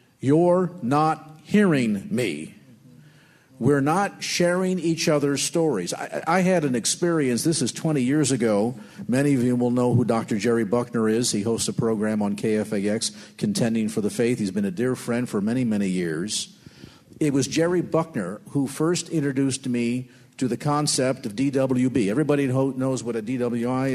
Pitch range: 125-170 Hz